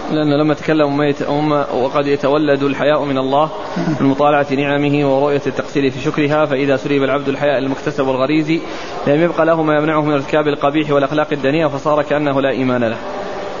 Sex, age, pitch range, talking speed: male, 20-39, 145-165 Hz, 160 wpm